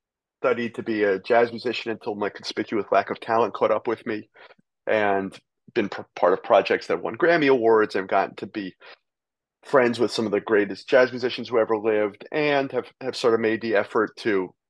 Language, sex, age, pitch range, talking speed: English, male, 30-49, 105-120 Hz, 200 wpm